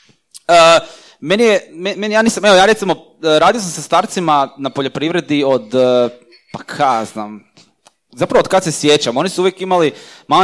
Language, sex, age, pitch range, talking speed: Croatian, male, 20-39, 135-200 Hz, 180 wpm